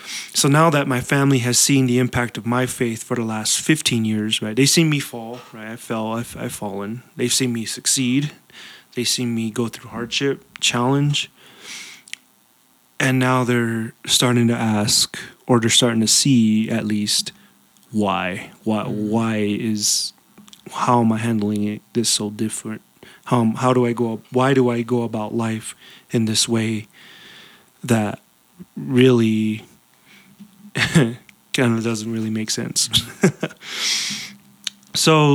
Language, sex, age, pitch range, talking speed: English, male, 30-49, 115-135 Hz, 145 wpm